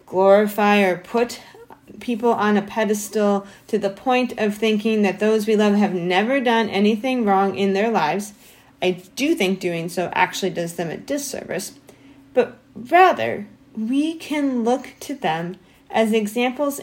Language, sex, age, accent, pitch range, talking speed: English, female, 30-49, American, 185-230 Hz, 155 wpm